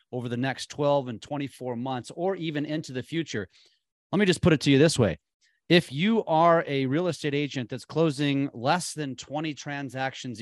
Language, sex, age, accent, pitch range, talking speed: English, male, 30-49, American, 125-160 Hz, 195 wpm